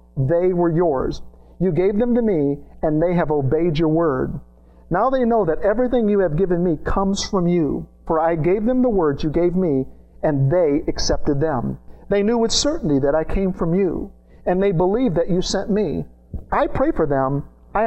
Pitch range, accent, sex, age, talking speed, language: 135-200 Hz, American, male, 50-69, 200 wpm, English